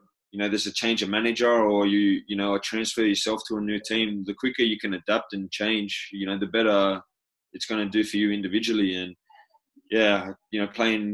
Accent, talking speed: Australian, 215 wpm